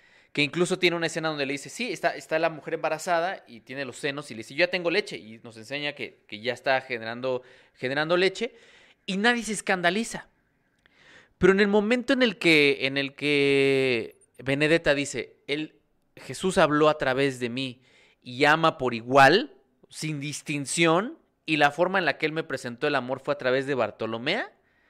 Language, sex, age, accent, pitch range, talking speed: Spanish, male, 30-49, Mexican, 125-185 Hz, 185 wpm